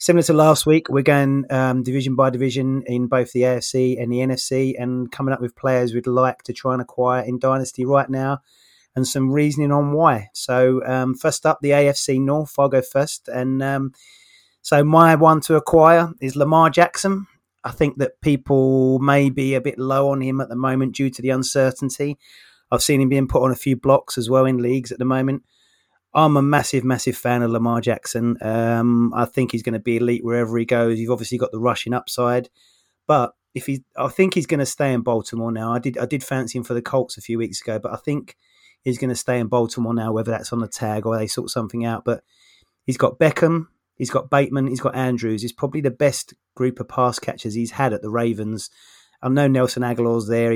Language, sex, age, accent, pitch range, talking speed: English, male, 20-39, British, 120-140 Hz, 225 wpm